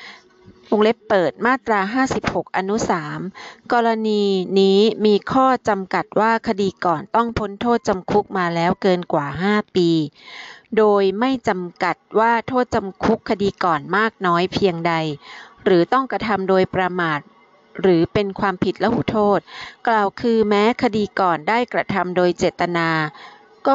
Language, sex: Thai, female